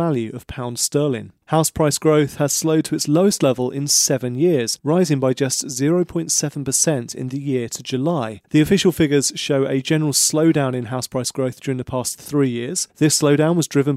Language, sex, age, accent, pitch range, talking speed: English, male, 30-49, British, 130-155 Hz, 195 wpm